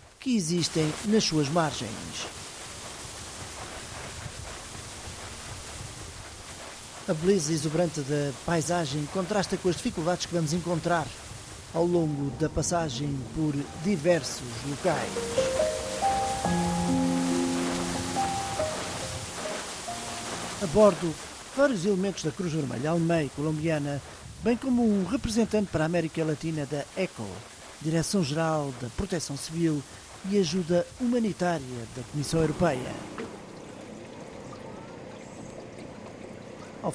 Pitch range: 125-180 Hz